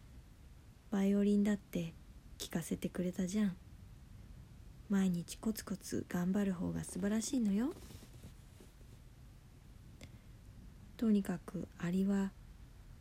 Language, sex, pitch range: Japanese, female, 170-215 Hz